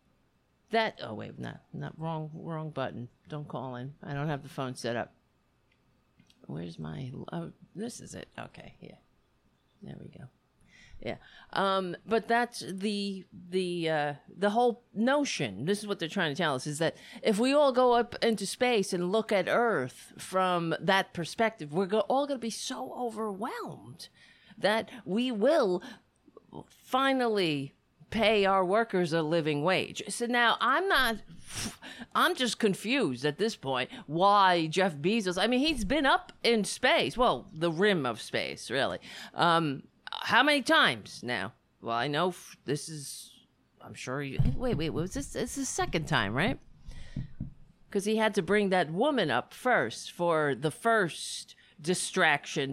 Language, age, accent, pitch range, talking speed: English, 50-69, American, 155-220 Hz, 165 wpm